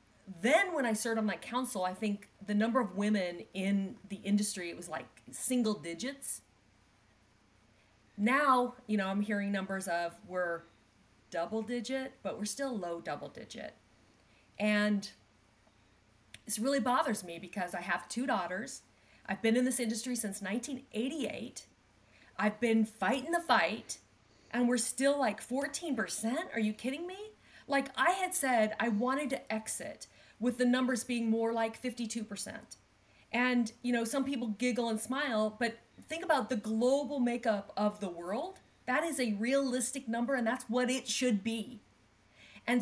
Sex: female